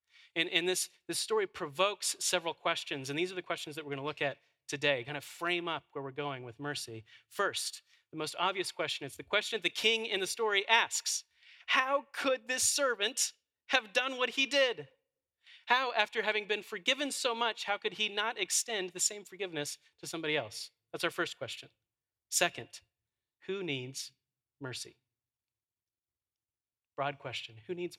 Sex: male